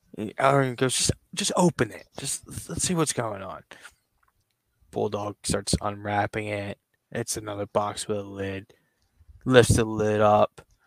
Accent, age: American, 20-39